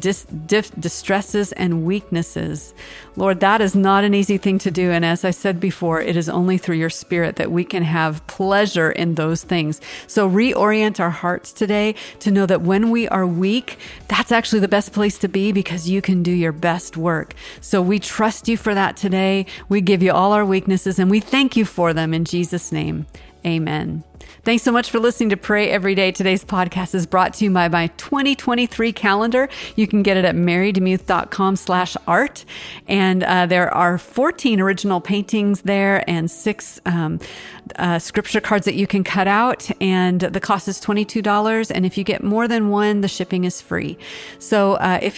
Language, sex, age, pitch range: English, female, 40-59, 175-210 Hz